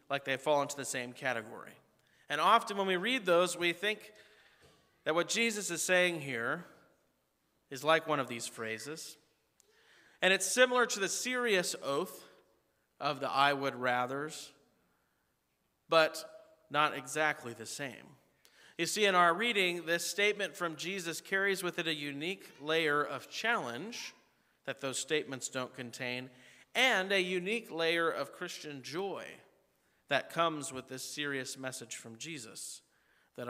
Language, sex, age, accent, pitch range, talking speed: English, male, 40-59, American, 130-175 Hz, 145 wpm